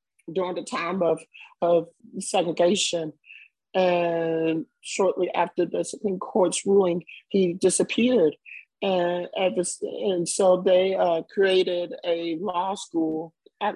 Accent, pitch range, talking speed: American, 175-210 Hz, 110 wpm